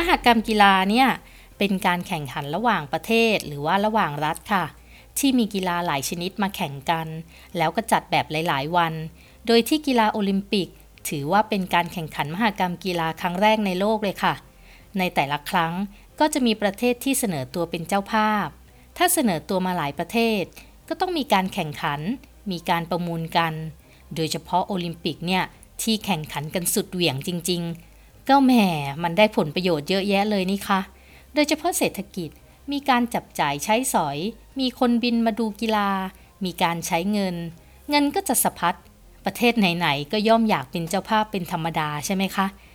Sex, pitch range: female, 170-225 Hz